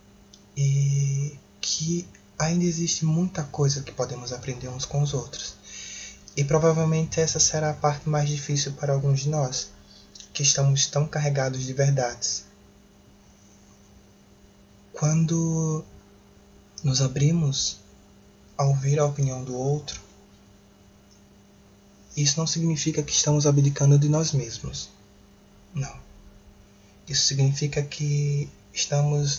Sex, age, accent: male, 20-39, Brazilian